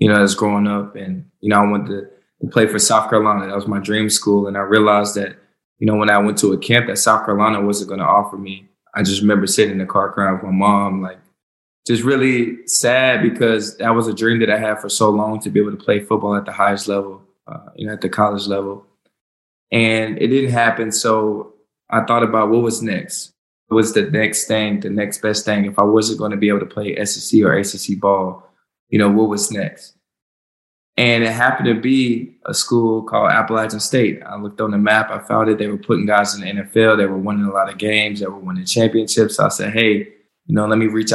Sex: male